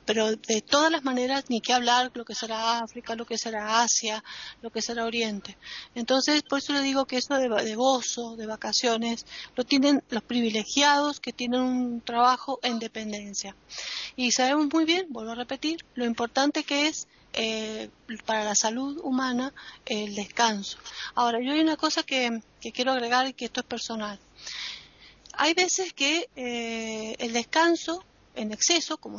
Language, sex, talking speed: Spanish, female, 170 wpm